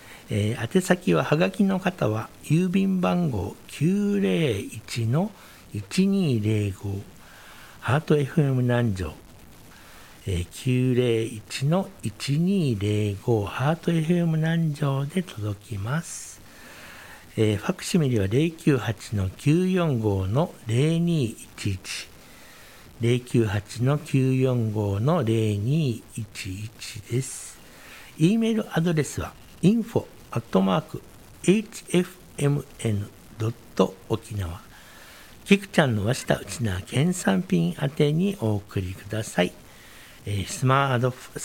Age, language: 60-79, Japanese